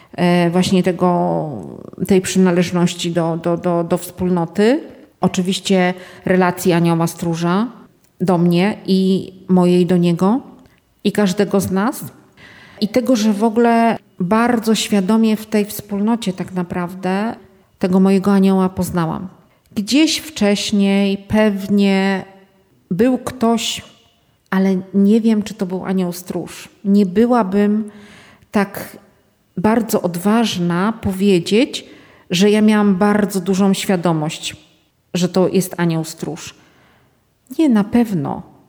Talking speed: 110 wpm